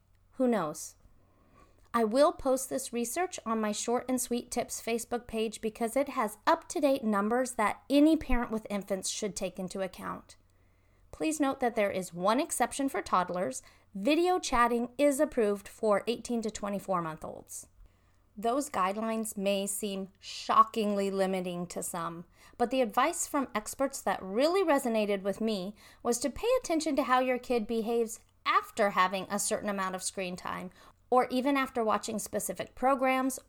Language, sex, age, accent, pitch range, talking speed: English, female, 40-59, American, 195-260 Hz, 160 wpm